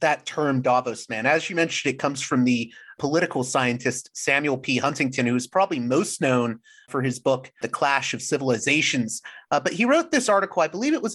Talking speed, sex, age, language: 205 wpm, male, 30-49, English